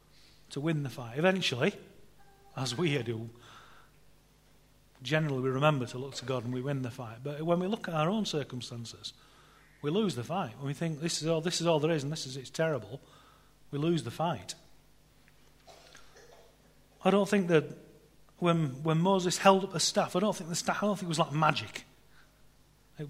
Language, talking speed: English, 195 wpm